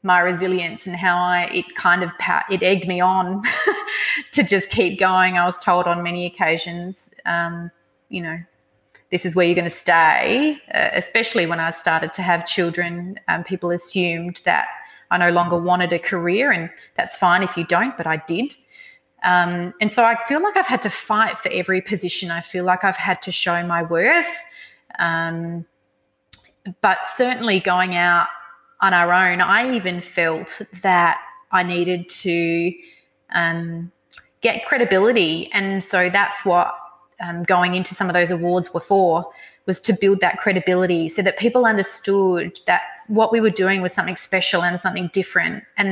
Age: 30-49